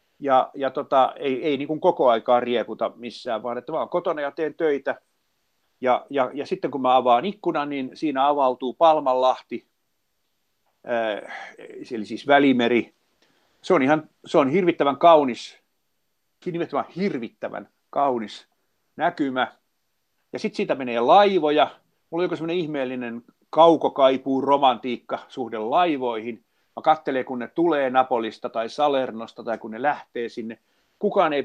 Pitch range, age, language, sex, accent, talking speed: 125-155 Hz, 50-69, Finnish, male, native, 140 wpm